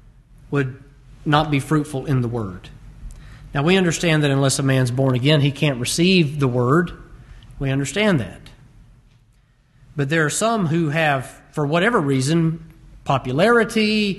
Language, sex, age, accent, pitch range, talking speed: English, male, 40-59, American, 130-160 Hz, 145 wpm